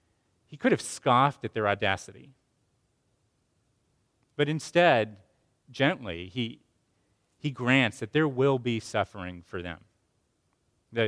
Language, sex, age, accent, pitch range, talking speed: English, male, 30-49, American, 110-145 Hz, 115 wpm